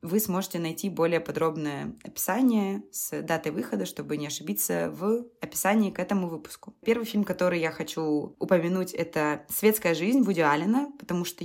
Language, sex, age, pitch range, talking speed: Russian, female, 20-39, 165-190 Hz, 155 wpm